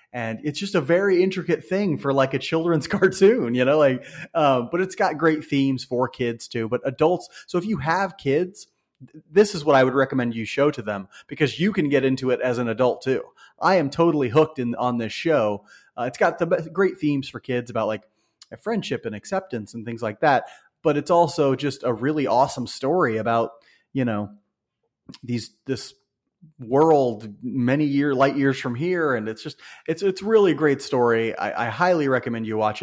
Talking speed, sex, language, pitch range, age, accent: 205 wpm, male, English, 115-155 Hz, 30-49, American